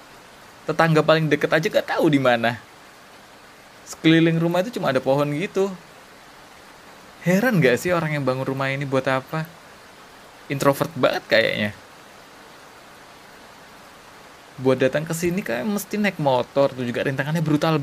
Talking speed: 135 wpm